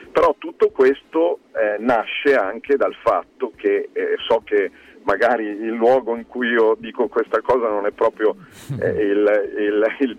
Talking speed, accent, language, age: 160 wpm, native, Italian, 50-69